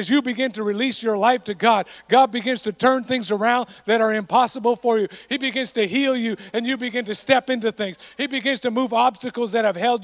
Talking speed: 240 wpm